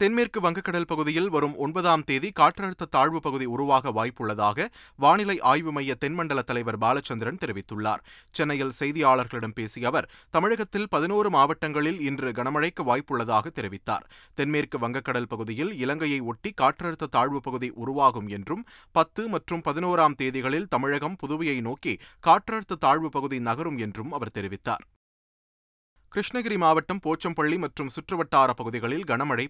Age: 30-49